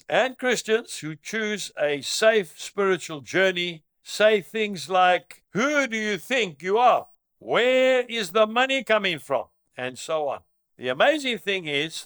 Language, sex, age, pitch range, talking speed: English, male, 60-79, 160-230 Hz, 150 wpm